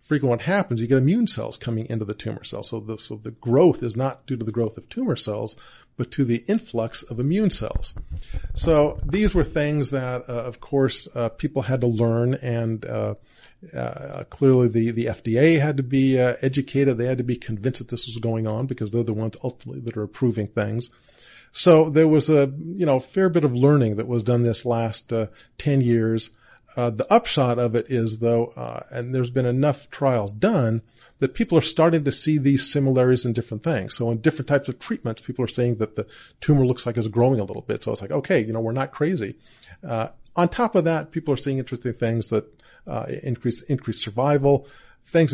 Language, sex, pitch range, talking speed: English, male, 115-140 Hz, 215 wpm